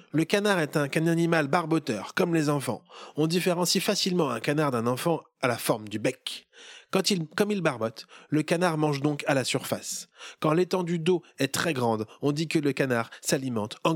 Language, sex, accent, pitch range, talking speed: French, male, French, 130-170 Hz, 195 wpm